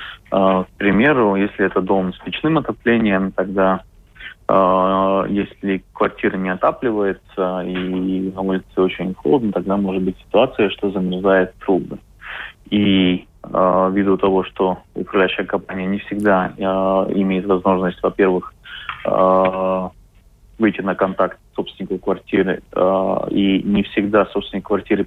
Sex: male